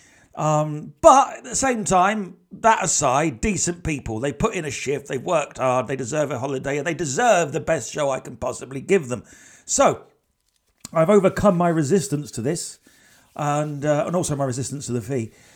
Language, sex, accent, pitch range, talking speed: English, male, British, 135-195 Hz, 190 wpm